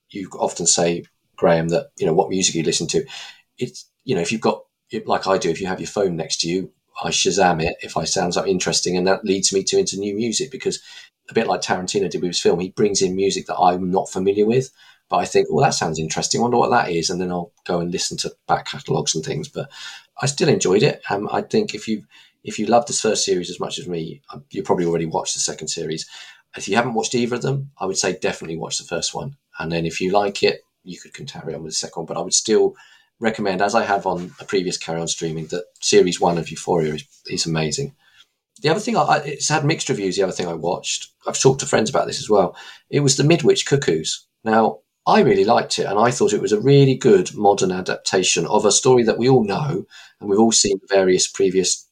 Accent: British